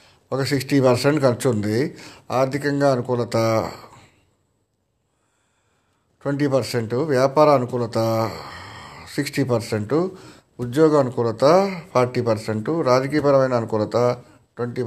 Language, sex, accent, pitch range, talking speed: Telugu, male, native, 110-135 Hz, 85 wpm